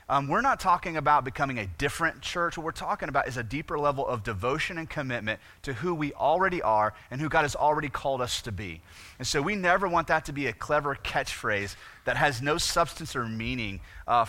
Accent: American